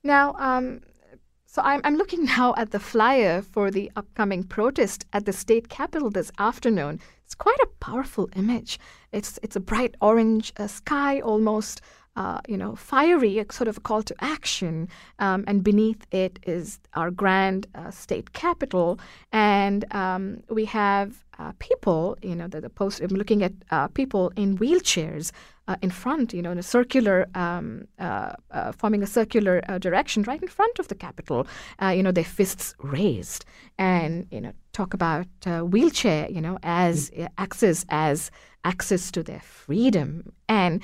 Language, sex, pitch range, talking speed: English, female, 185-245 Hz, 170 wpm